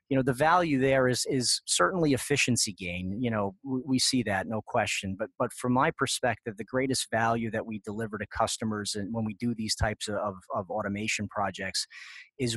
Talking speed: 195 wpm